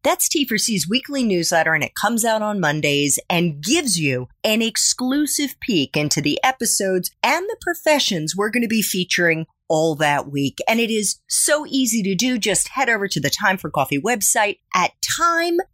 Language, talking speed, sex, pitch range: English, 185 wpm, female, 160-250 Hz